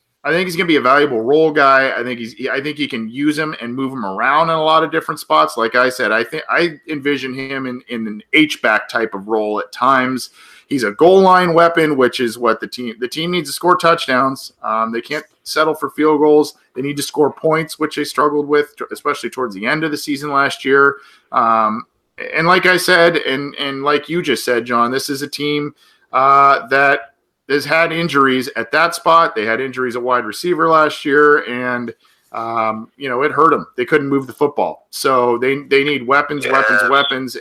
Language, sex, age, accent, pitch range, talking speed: English, male, 40-59, American, 115-155 Hz, 225 wpm